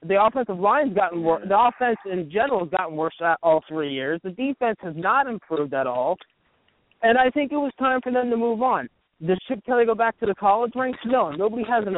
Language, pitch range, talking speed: English, 175-225 Hz, 230 wpm